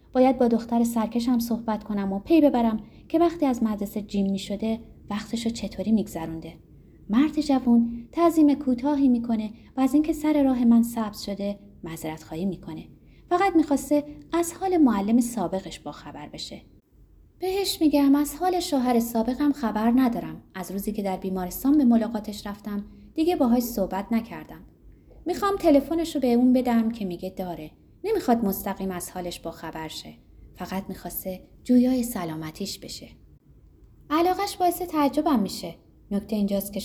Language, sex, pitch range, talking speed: Persian, female, 190-275 Hz, 145 wpm